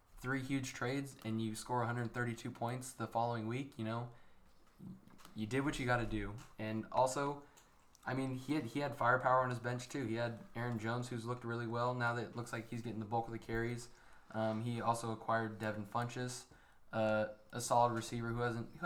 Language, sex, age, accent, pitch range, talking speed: English, male, 20-39, American, 110-125 Hz, 200 wpm